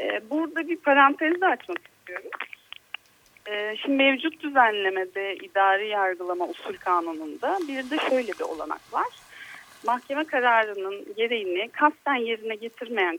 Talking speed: 115 wpm